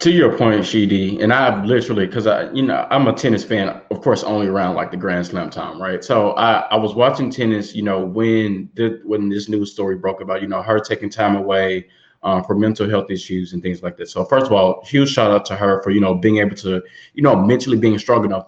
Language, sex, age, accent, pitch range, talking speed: English, male, 20-39, American, 100-135 Hz, 250 wpm